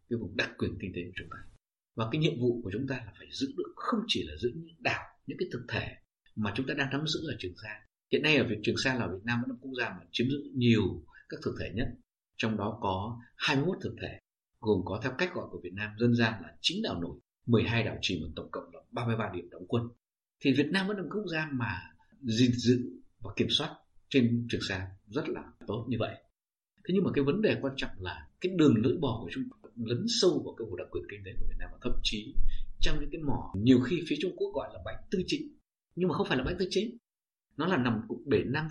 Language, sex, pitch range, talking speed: Vietnamese, male, 105-140 Hz, 265 wpm